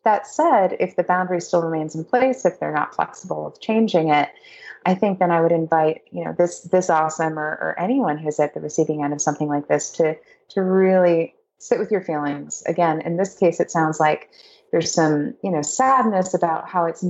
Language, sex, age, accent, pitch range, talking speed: English, female, 30-49, American, 160-210 Hz, 215 wpm